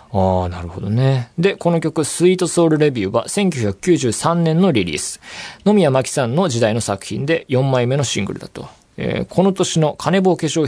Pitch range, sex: 105-160 Hz, male